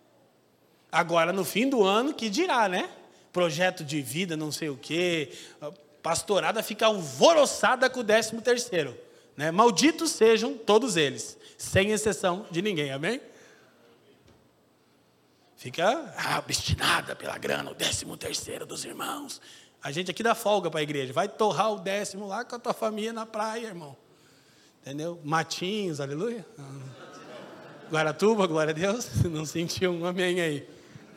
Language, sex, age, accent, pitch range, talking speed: Portuguese, male, 20-39, Brazilian, 170-260 Hz, 140 wpm